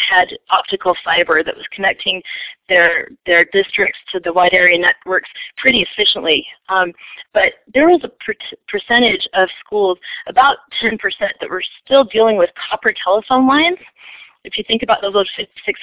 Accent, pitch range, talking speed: American, 180-250 Hz, 165 wpm